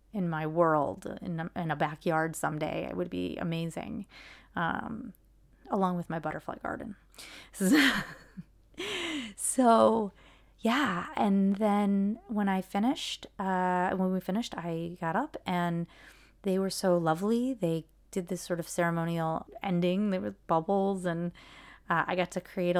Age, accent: 30-49, American